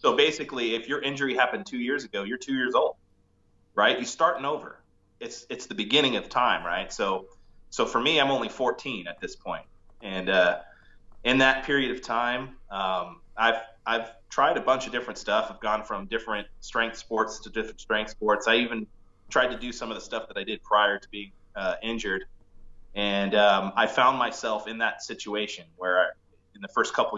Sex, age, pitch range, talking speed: male, 30-49, 95-115 Hz, 200 wpm